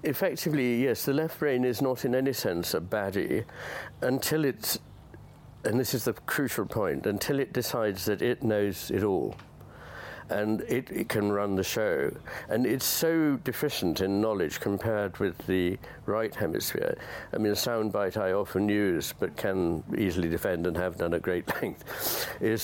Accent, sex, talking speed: British, male, 170 wpm